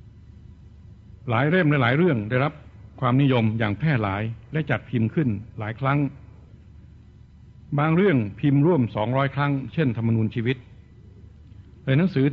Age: 60-79